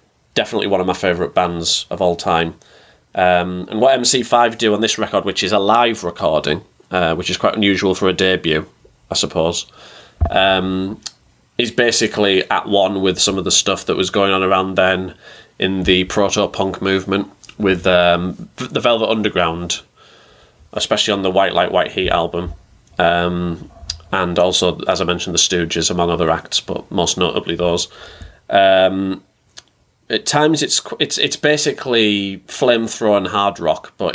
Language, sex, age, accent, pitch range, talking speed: English, male, 20-39, British, 90-105 Hz, 160 wpm